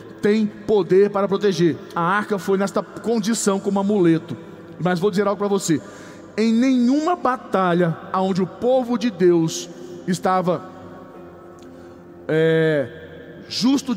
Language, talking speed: Portuguese, 115 wpm